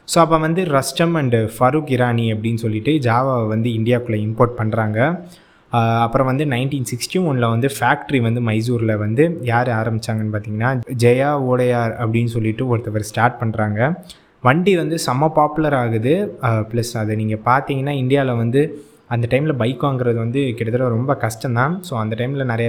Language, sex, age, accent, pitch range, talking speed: English, male, 20-39, Indian, 115-145 Hz, 65 wpm